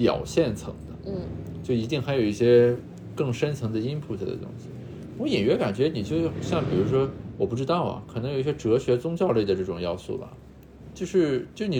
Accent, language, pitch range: native, Chinese, 105-150 Hz